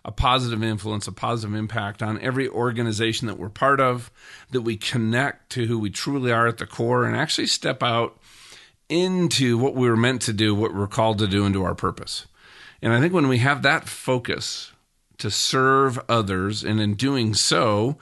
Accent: American